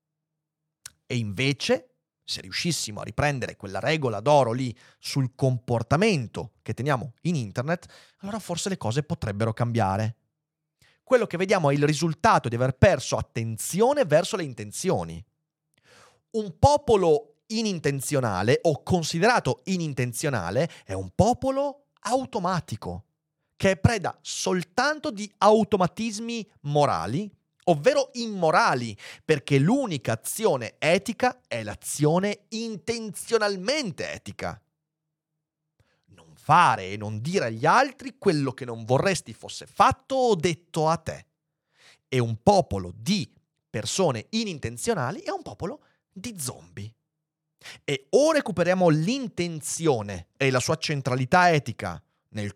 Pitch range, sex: 120-195 Hz, male